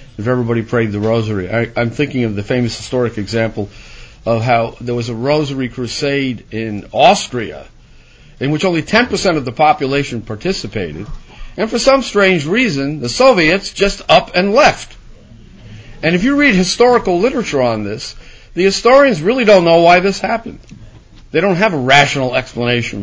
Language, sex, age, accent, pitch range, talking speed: English, male, 50-69, American, 115-165 Hz, 160 wpm